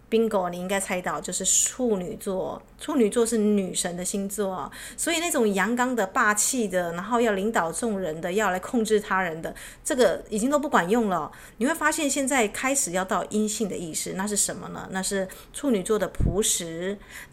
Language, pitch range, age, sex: Chinese, 175-225 Hz, 30-49, female